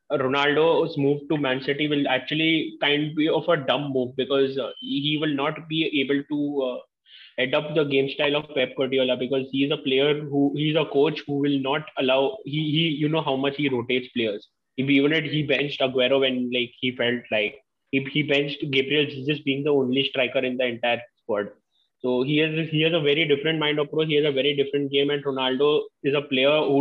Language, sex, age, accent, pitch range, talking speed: English, male, 20-39, Indian, 130-145 Hz, 220 wpm